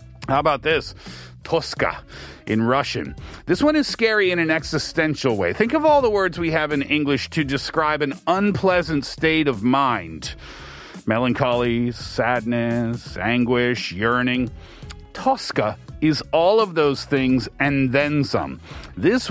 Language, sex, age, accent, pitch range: Korean, male, 40-59, American, 120-160 Hz